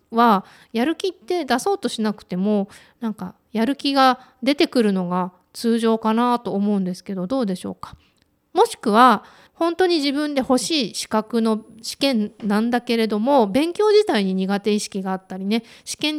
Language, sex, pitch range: Japanese, female, 205-275 Hz